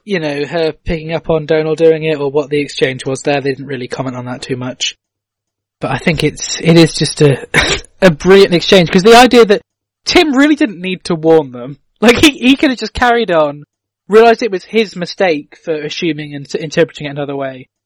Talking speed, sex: 220 wpm, male